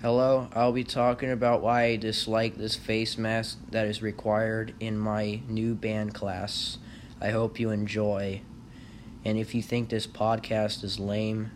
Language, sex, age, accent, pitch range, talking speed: English, male, 30-49, American, 105-120 Hz, 160 wpm